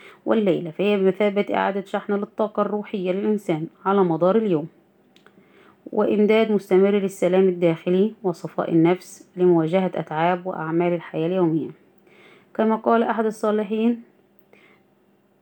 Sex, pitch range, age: female, 175-205 Hz, 20-39